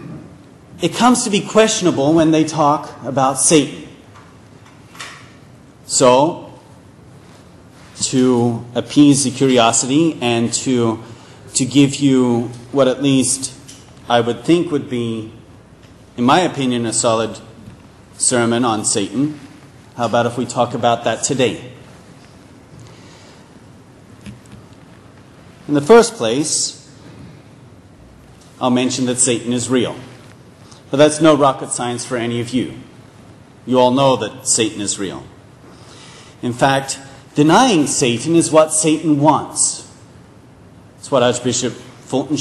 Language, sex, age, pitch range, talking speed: English, male, 40-59, 120-150 Hz, 115 wpm